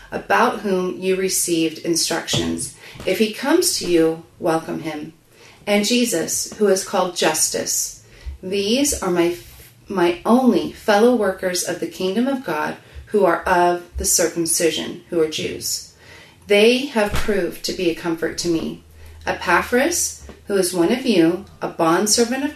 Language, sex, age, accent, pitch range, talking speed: English, female, 30-49, American, 160-220 Hz, 150 wpm